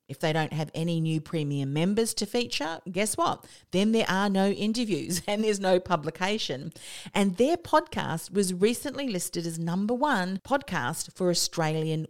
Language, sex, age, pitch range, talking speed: English, female, 40-59, 150-195 Hz, 165 wpm